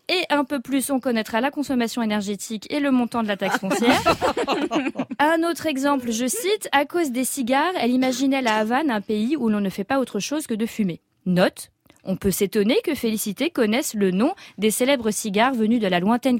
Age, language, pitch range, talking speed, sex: 20-39, French, 210-285 Hz, 210 wpm, female